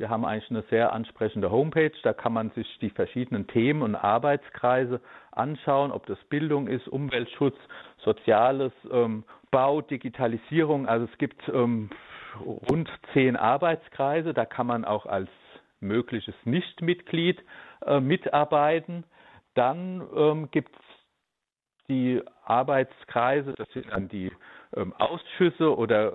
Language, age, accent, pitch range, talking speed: German, 50-69, German, 115-150 Hz, 130 wpm